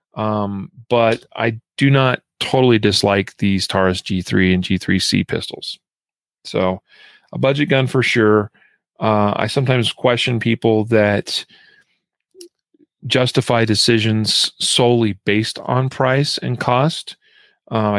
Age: 40-59